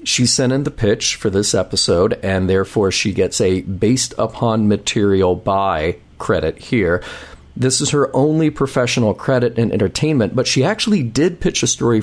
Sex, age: male, 40-59